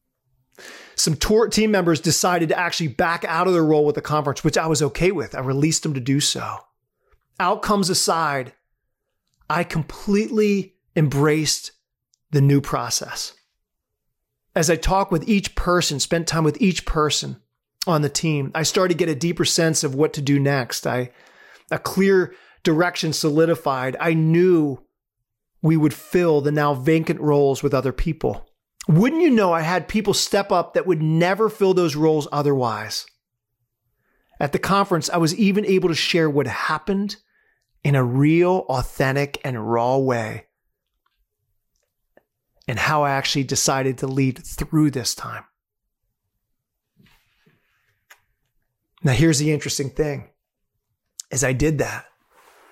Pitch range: 135-180 Hz